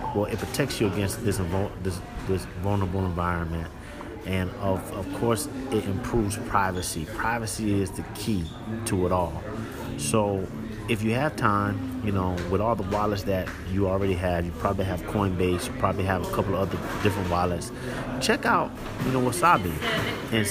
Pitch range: 100-125 Hz